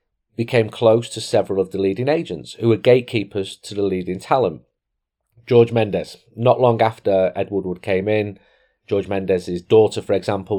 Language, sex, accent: English, male, British